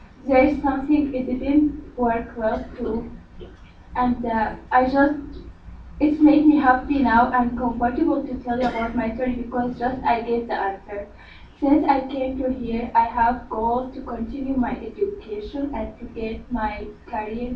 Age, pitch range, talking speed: 20-39, 235-275 Hz, 160 wpm